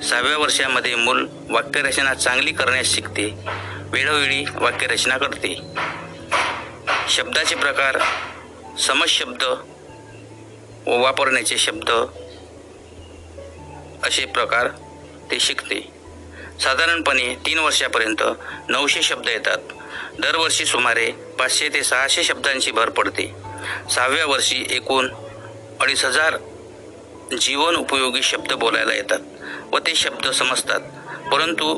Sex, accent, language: male, native, Marathi